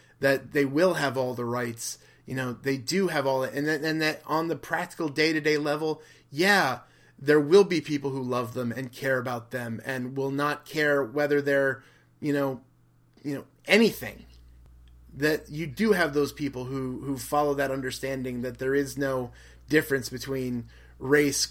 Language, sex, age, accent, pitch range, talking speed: English, male, 30-49, American, 115-155 Hz, 175 wpm